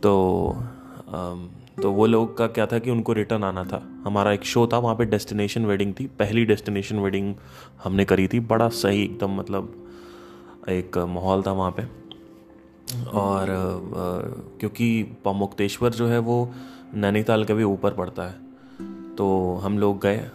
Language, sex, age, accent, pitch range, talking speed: Hindi, male, 20-39, native, 90-110 Hz, 155 wpm